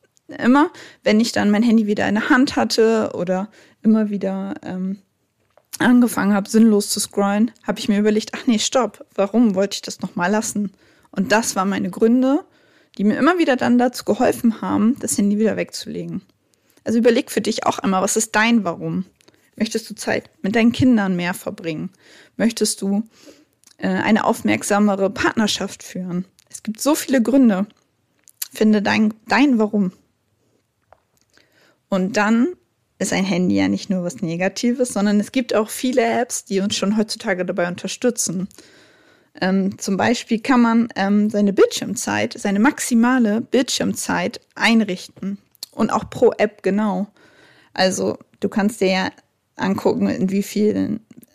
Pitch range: 195-235 Hz